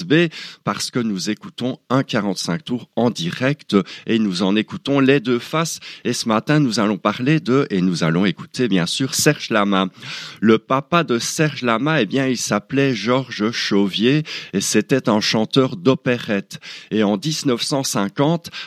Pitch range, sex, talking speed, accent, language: 100-140 Hz, male, 165 wpm, French, French